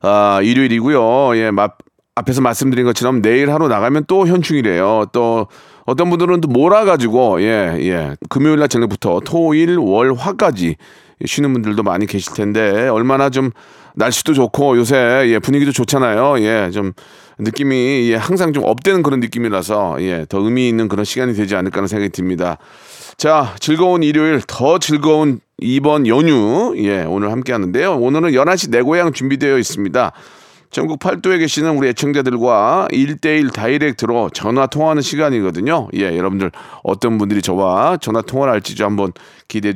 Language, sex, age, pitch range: Korean, male, 40-59, 105-155 Hz